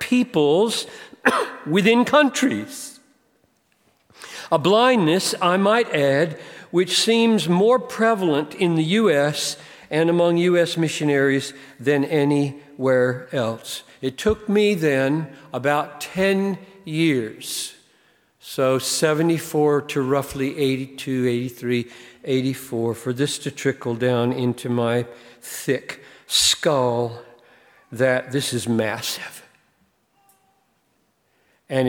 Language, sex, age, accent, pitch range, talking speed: English, male, 50-69, American, 125-175 Hz, 95 wpm